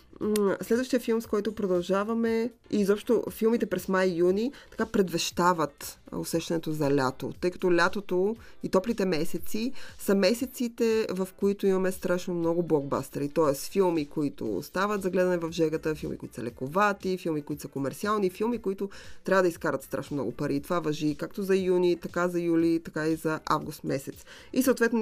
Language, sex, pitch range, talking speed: Bulgarian, female, 160-195 Hz, 165 wpm